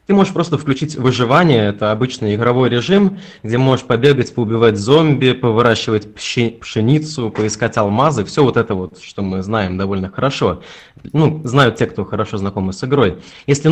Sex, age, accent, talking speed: male, 20-39, native, 160 wpm